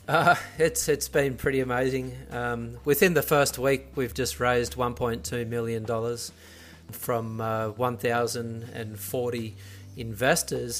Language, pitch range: English, 120-145 Hz